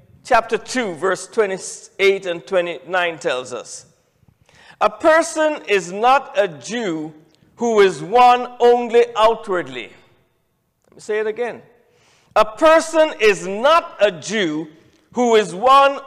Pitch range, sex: 195-280 Hz, male